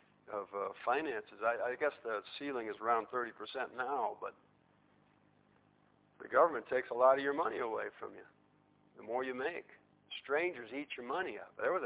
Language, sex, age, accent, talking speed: English, male, 50-69, American, 175 wpm